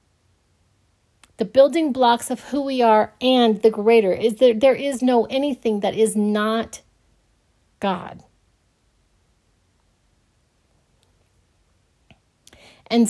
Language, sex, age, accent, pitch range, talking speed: English, female, 40-59, American, 180-225 Hz, 95 wpm